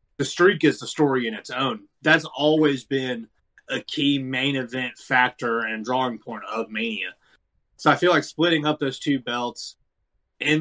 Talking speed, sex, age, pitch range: 175 wpm, male, 20-39, 120-145 Hz